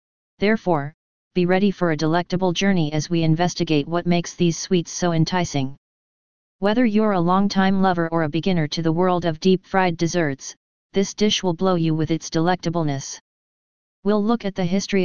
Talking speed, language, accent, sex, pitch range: 170 wpm, English, American, female, 165-190 Hz